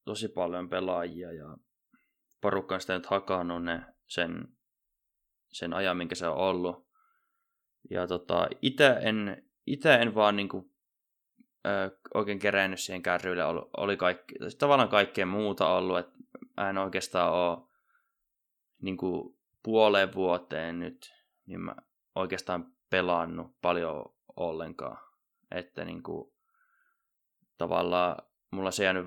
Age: 20-39